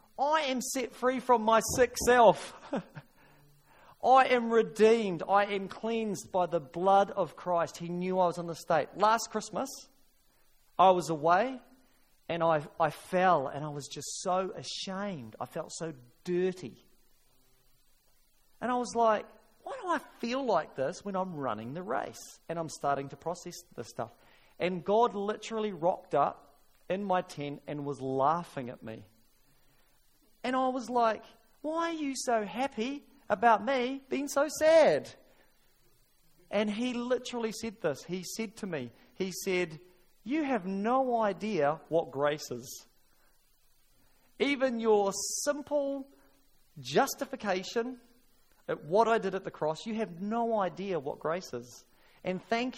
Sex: male